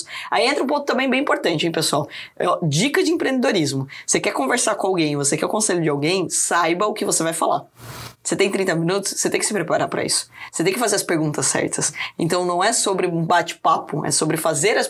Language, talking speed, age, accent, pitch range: Portuguese, 230 wpm, 20-39, Brazilian, 170-225 Hz